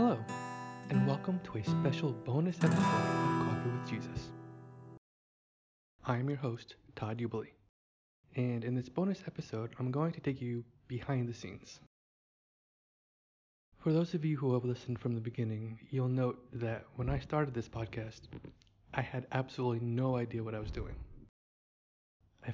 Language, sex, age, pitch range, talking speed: English, male, 20-39, 110-135 Hz, 155 wpm